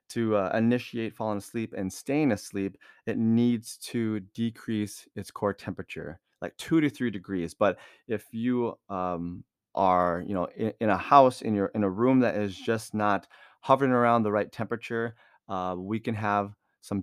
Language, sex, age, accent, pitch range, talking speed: English, male, 30-49, American, 100-120 Hz, 175 wpm